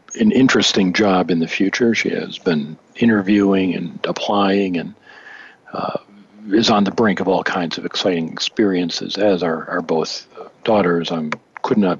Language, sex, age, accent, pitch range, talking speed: English, male, 50-69, American, 85-100 Hz, 160 wpm